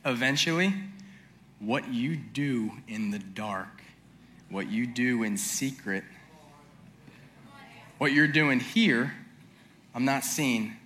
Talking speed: 105 wpm